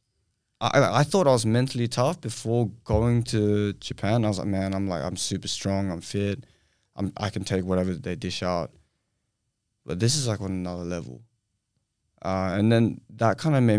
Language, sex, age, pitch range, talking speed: English, male, 20-39, 95-115 Hz, 190 wpm